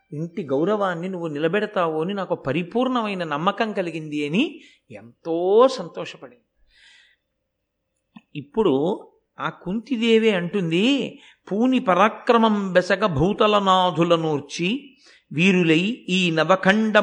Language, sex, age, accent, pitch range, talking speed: Telugu, male, 50-69, native, 155-215 Hz, 85 wpm